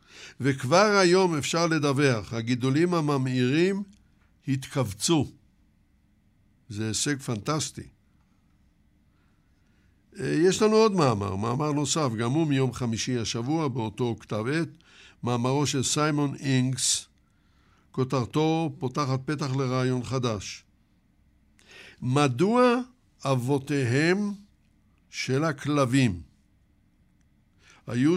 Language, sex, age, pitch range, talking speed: Hebrew, male, 60-79, 110-150 Hz, 80 wpm